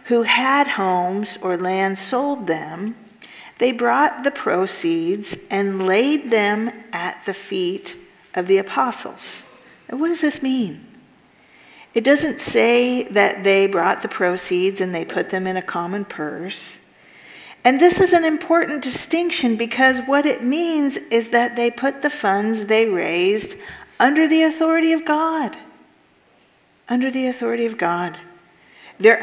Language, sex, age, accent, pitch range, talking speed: English, female, 50-69, American, 195-265 Hz, 145 wpm